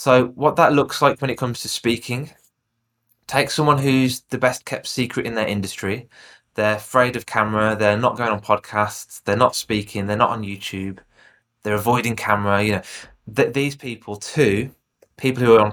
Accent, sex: British, male